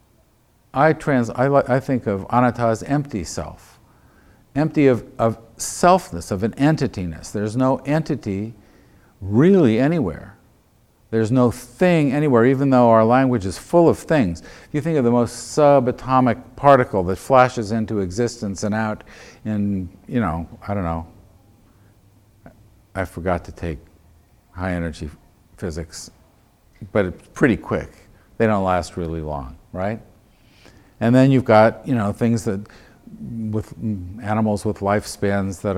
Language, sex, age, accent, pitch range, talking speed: English, male, 50-69, American, 95-125 Hz, 140 wpm